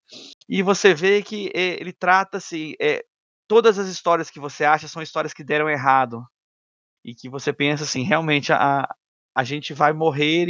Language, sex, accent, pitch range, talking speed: Portuguese, male, Brazilian, 145-180 Hz, 170 wpm